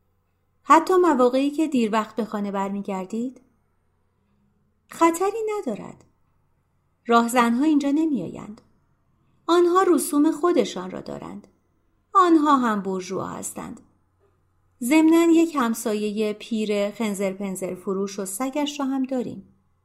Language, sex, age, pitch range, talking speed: Persian, female, 30-49, 185-290 Hz, 110 wpm